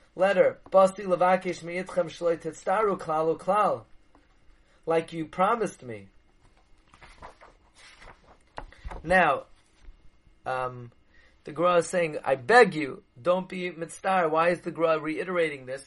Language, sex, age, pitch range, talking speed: English, male, 30-49, 140-175 Hz, 105 wpm